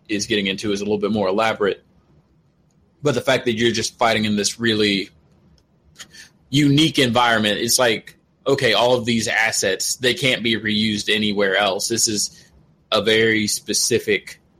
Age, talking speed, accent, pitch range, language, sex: 20-39, 160 wpm, American, 100-115 Hz, English, male